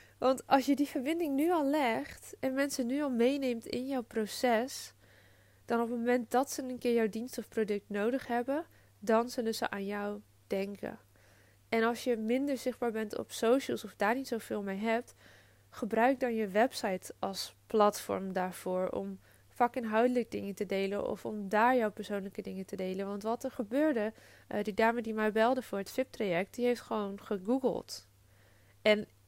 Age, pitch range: 20-39, 200-245 Hz